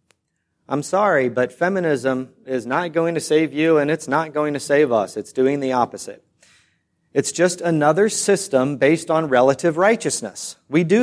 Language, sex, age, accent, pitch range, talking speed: English, male, 30-49, American, 150-205 Hz, 170 wpm